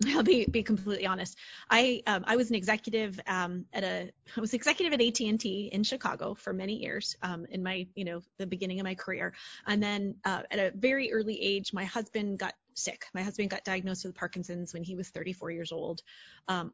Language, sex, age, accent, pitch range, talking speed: English, female, 20-39, American, 190-225 Hz, 210 wpm